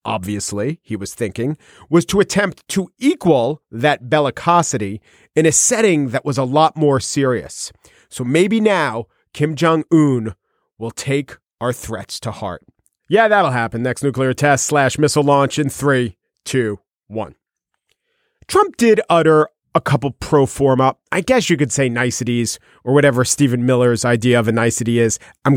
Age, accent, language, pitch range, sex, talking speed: 40-59, American, English, 135-195 Hz, male, 155 wpm